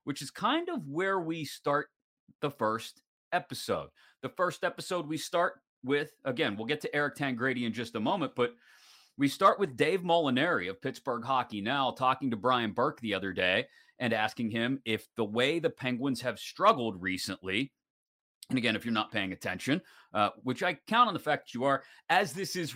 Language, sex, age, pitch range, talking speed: English, male, 30-49, 115-155 Hz, 195 wpm